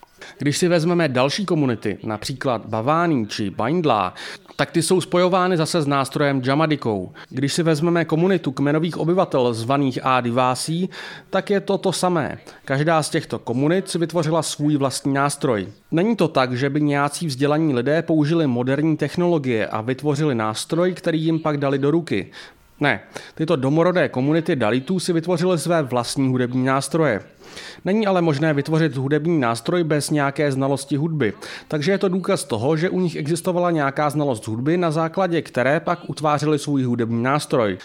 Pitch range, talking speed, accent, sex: 135-170 Hz, 155 wpm, native, male